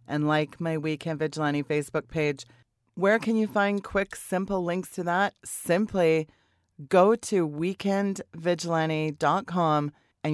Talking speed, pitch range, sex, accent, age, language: 120 wpm, 150-180 Hz, female, American, 30-49, English